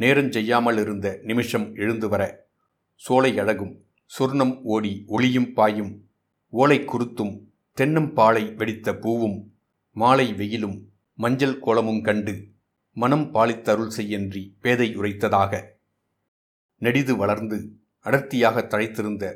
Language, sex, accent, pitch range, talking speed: Tamil, male, native, 105-125 Hz, 95 wpm